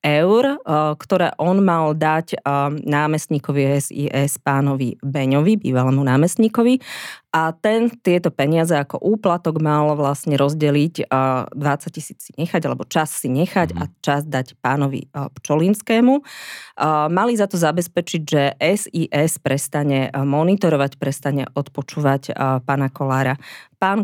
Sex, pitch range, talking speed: female, 140-170 Hz, 110 wpm